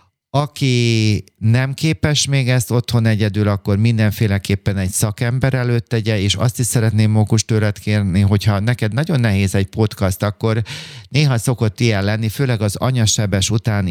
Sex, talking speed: male, 145 wpm